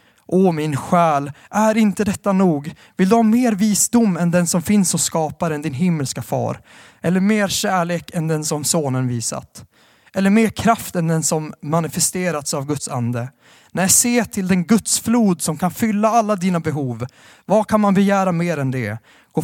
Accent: native